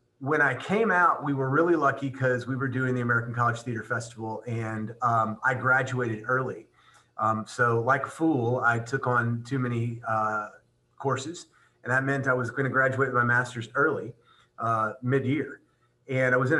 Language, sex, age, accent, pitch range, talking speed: English, male, 30-49, American, 110-130 Hz, 190 wpm